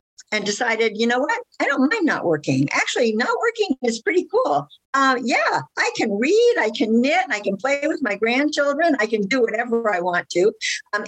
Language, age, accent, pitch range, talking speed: English, 50-69, American, 175-230 Hz, 205 wpm